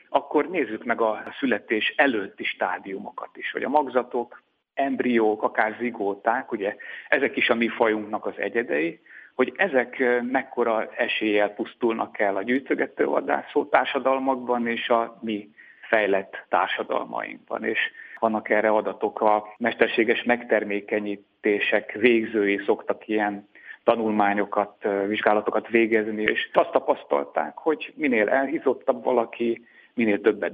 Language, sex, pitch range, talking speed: Hungarian, male, 105-120 Hz, 115 wpm